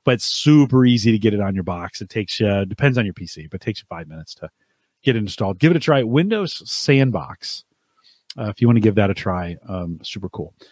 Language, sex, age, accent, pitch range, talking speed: English, male, 40-59, American, 105-140 Hz, 250 wpm